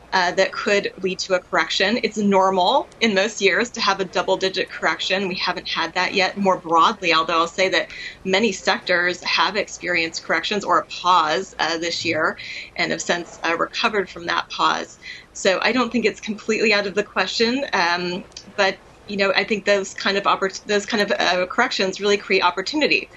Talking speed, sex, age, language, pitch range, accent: 195 wpm, female, 30-49, English, 180-205 Hz, American